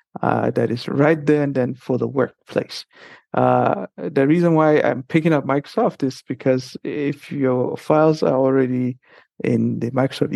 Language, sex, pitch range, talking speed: English, male, 120-145 Hz, 160 wpm